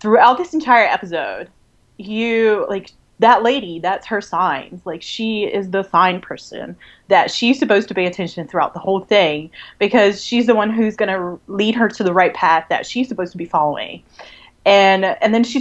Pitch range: 165-215 Hz